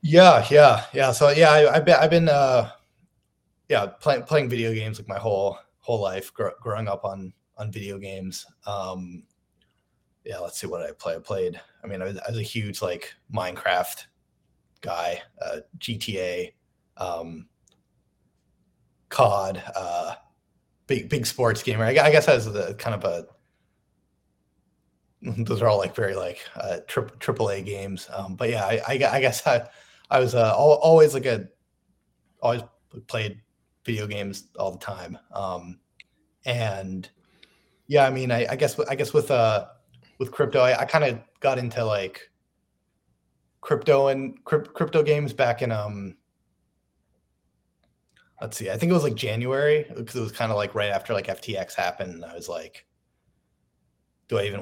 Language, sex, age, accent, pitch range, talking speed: English, male, 20-39, American, 90-135 Hz, 165 wpm